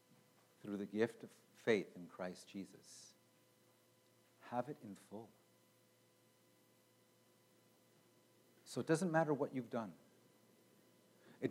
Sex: male